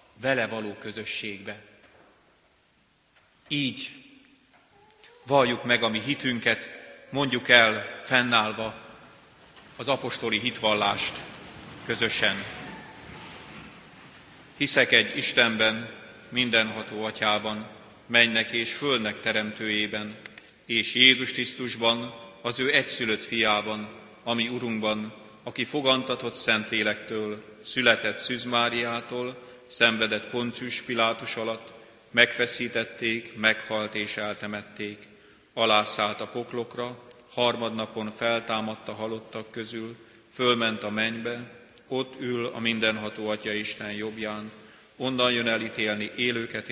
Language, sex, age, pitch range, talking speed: Hungarian, male, 40-59, 105-120 Hz, 85 wpm